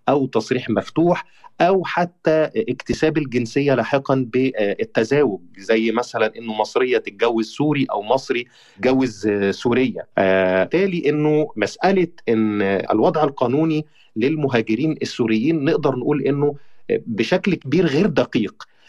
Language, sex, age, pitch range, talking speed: Arabic, male, 30-49, 115-160 Hz, 110 wpm